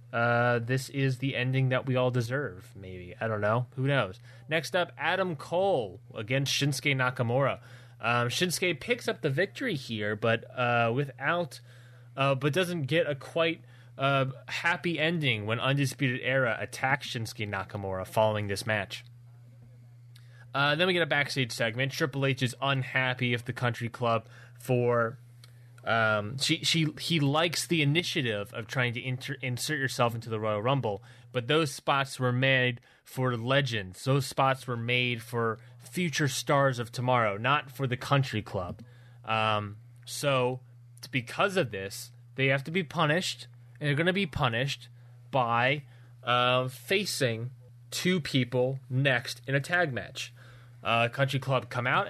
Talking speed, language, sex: 155 wpm, English, male